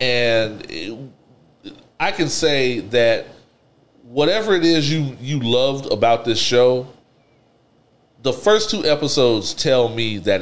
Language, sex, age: English, male, 40-59